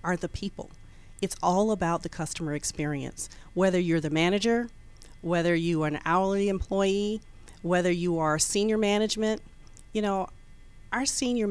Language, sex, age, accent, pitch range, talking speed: English, female, 40-59, American, 150-195 Hz, 145 wpm